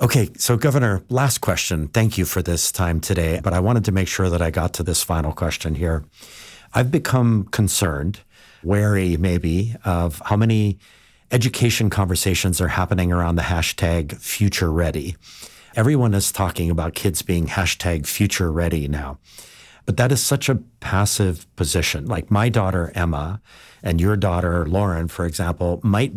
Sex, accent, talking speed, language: male, American, 160 wpm, English